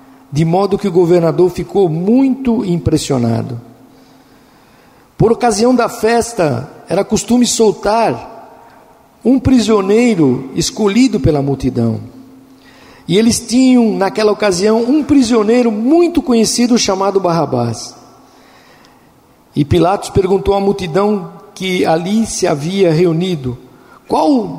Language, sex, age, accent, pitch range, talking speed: Portuguese, male, 60-79, Brazilian, 165-235 Hz, 100 wpm